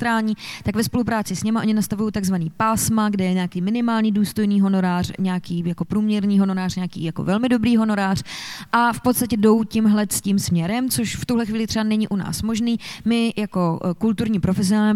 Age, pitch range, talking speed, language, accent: 20-39, 180-215 Hz, 190 wpm, Czech, native